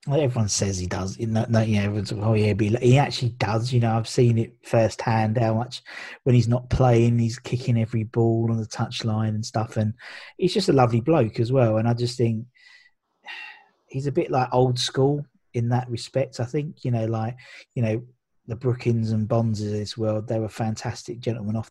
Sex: male